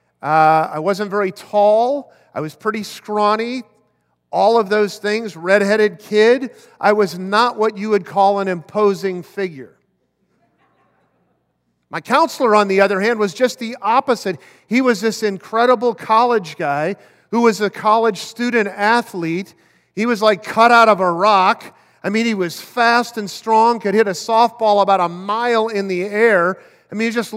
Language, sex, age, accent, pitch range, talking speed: English, male, 40-59, American, 185-235 Hz, 165 wpm